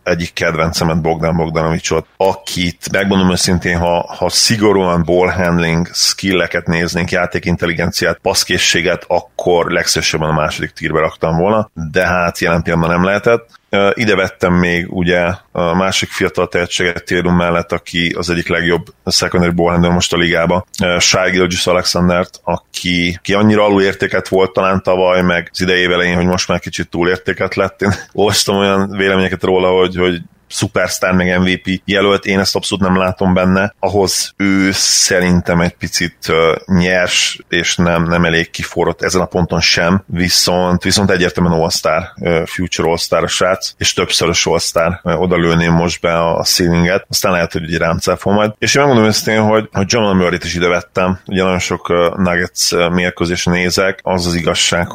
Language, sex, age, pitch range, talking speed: Hungarian, male, 30-49, 85-95 Hz, 150 wpm